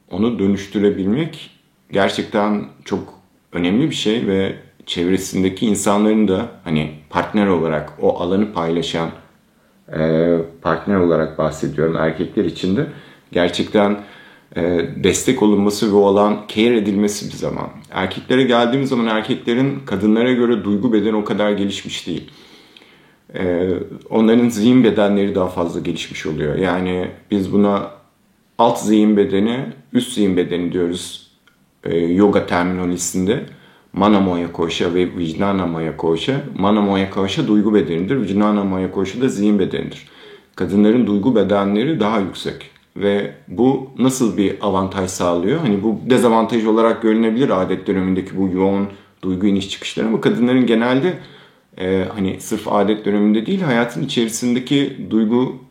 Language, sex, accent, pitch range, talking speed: Turkish, male, native, 90-110 Hz, 125 wpm